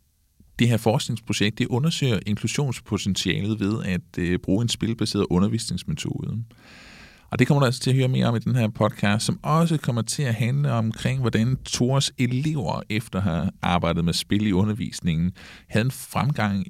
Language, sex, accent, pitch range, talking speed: Danish, male, native, 95-140 Hz, 175 wpm